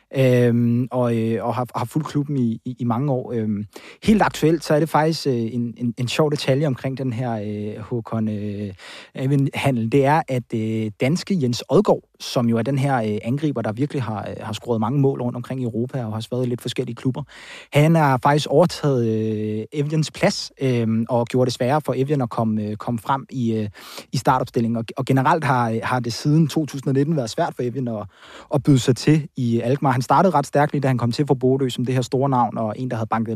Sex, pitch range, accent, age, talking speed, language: male, 115-140 Hz, native, 20-39, 230 wpm, Danish